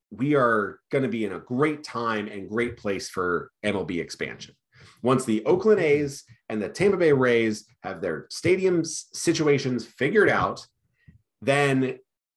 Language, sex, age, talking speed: English, male, 30-49, 145 wpm